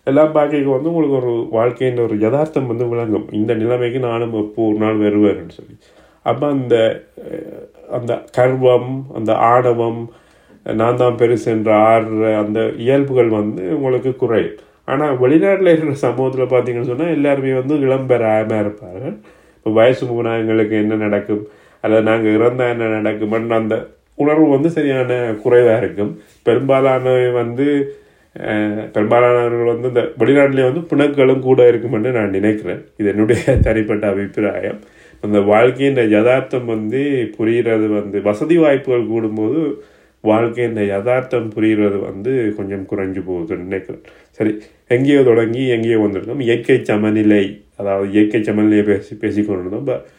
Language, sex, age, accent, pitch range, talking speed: Tamil, male, 30-49, native, 105-125 Hz, 125 wpm